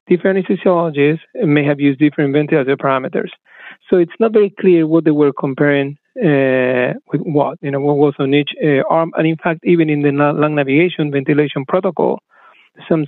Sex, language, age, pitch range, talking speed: male, English, 40-59, 140-170 Hz, 180 wpm